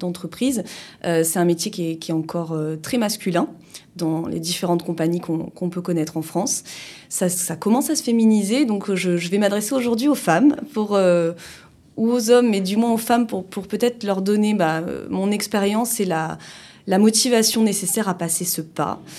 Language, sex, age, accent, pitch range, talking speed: French, female, 20-39, French, 170-205 Hz, 200 wpm